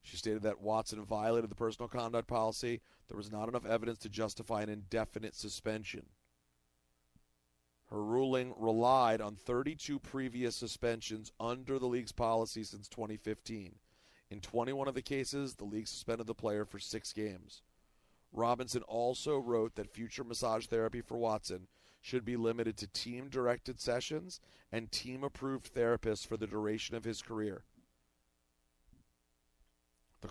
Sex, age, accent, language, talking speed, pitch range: male, 40-59, American, English, 140 wpm, 105-120 Hz